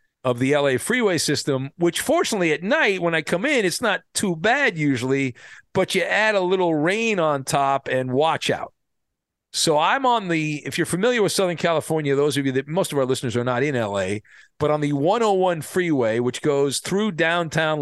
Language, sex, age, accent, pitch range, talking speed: English, male, 40-59, American, 135-180 Hz, 200 wpm